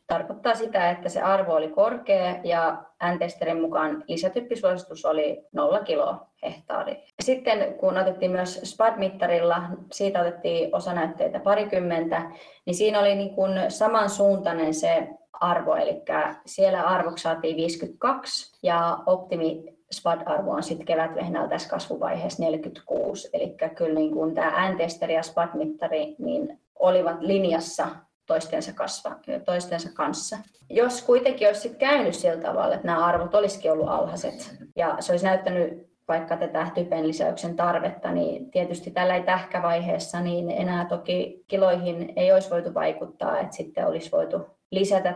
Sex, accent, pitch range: female, native, 170-220 Hz